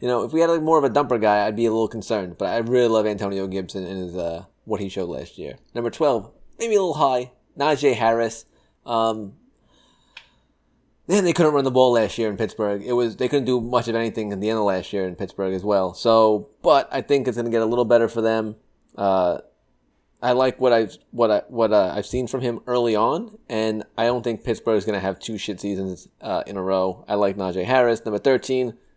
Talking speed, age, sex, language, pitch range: 240 wpm, 20-39, male, English, 100-125 Hz